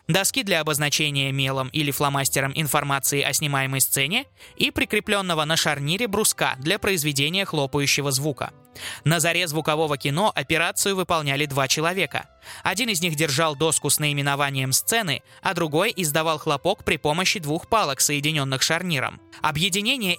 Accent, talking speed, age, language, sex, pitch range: native, 135 wpm, 20-39, Russian, male, 145-195 Hz